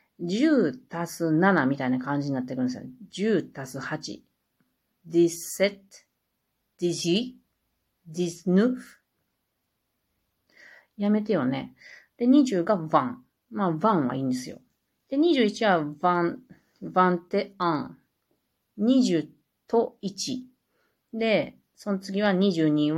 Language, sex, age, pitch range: Japanese, female, 40-59, 170-260 Hz